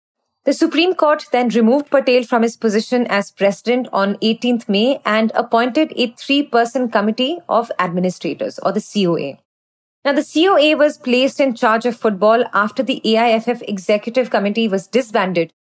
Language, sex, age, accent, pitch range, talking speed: English, female, 30-49, Indian, 210-270 Hz, 155 wpm